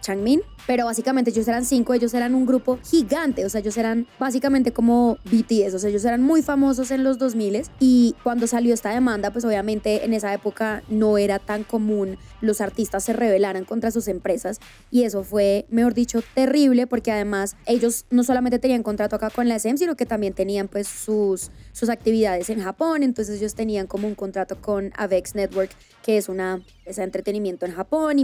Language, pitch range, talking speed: Spanish, 205-240 Hz, 195 wpm